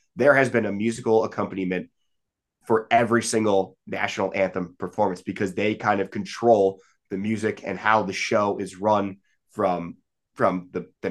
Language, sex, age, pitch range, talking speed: English, male, 20-39, 105-125 Hz, 155 wpm